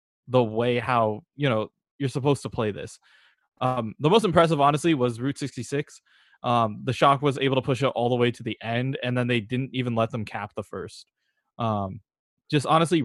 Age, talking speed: 20-39, 205 wpm